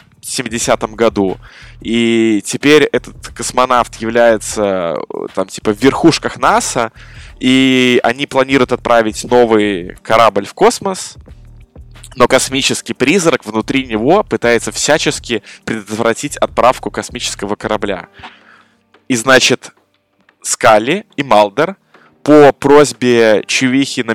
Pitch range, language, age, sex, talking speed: 115-175 Hz, Russian, 20-39, male, 100 wpm